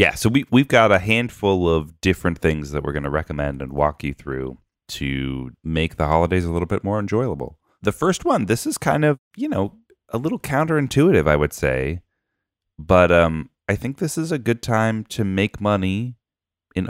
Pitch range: 75-100 Hz